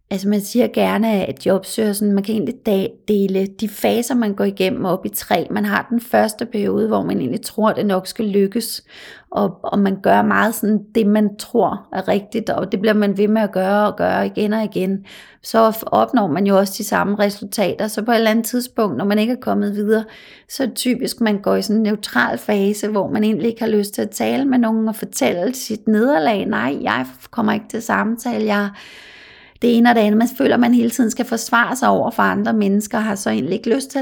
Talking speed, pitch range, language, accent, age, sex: 235 wpm, 210-240 Hz, Danish, native, 30-49, female